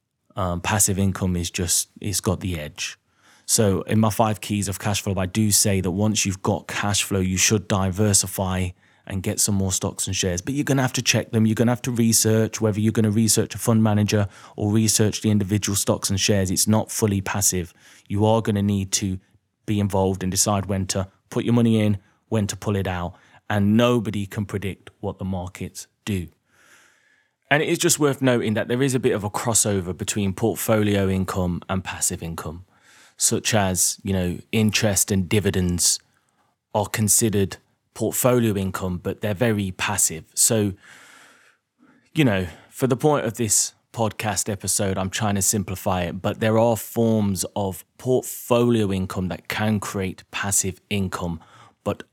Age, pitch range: 20-39, 95-110 Hz